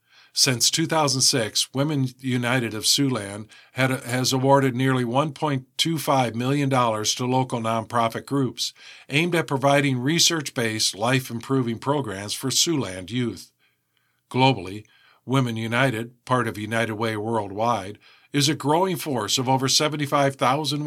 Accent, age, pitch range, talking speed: American, 50-69, 115-140 Hz, 110 wpm